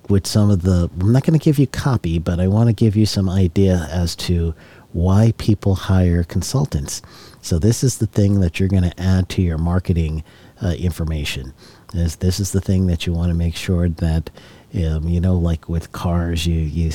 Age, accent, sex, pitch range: 40-59, American, male, 80-100 Hz